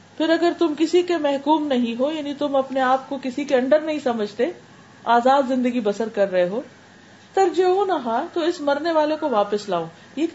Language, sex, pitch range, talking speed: Urdu, female, 210-275 Hz, 195 wpm